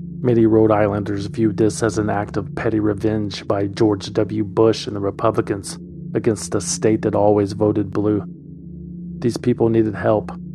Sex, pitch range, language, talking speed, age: male, 105-120 Hz, English, 165 wpm, 40-59